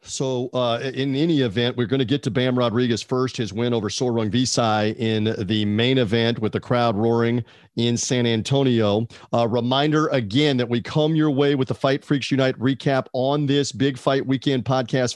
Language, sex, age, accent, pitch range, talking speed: English, male, 40-59, American, 120-145 Hz, 195 wpm